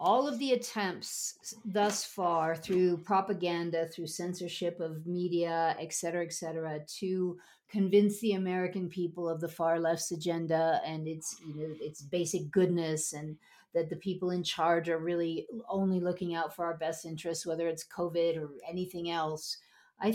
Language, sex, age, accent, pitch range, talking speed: English, female, 50-69, American, 165-195 Hz, 165 wpm